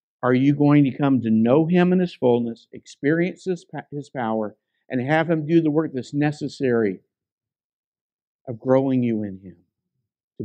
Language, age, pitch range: English, 50-69, 135-195 Hz